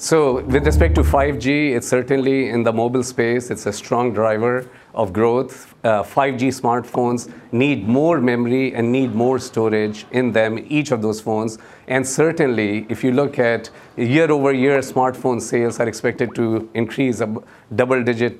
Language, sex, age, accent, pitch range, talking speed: English, male, 50-69, Indian, 115-145 Hz, 155 wpm